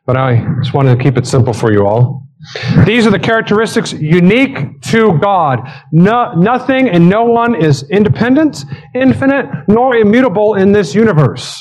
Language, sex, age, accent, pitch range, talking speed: English, male, 40-59, American, 135-175 Hz, 155 wpm